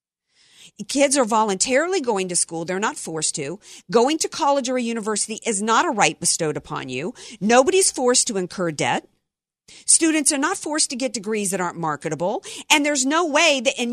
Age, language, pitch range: 50-69, English, 185-260 Hz